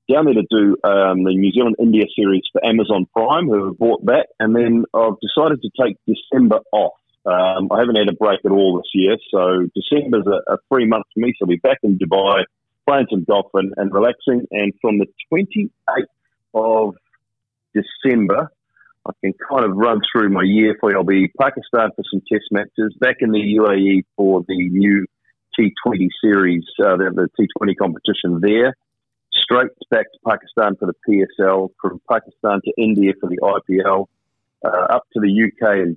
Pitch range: 95-110 Hz